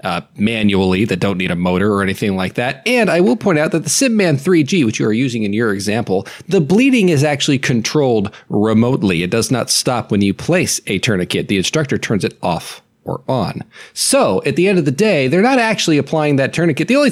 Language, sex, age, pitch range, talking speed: English, male, 40-59, 120-195 Hz, 225 wpm